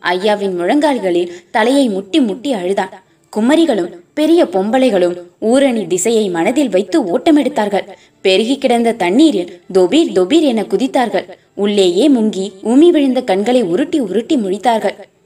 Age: 20-39